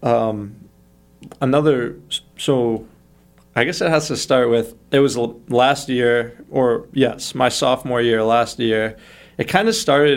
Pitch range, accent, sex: 110-125 Hz, American, male